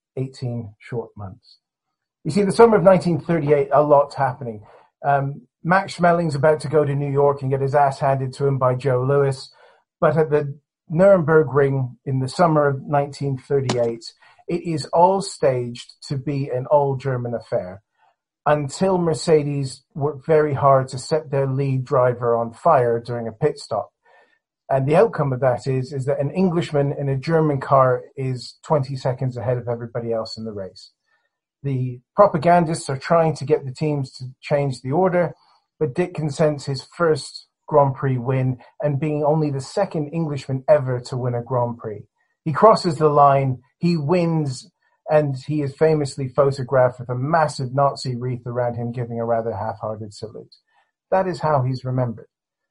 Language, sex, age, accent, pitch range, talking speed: English, male, 40-59, British, 125-155 Hz, 170 wpm